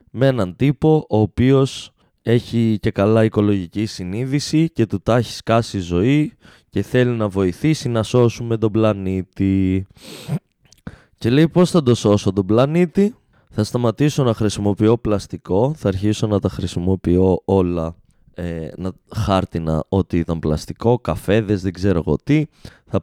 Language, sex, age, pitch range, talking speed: Greek, male, 20-39, 95-130 Hz, 140 wpm